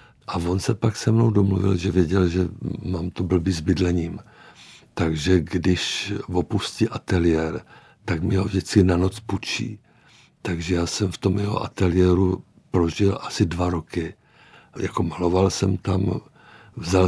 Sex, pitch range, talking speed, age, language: male, 85-100 Hz, 150 wpm, 60-79, Czech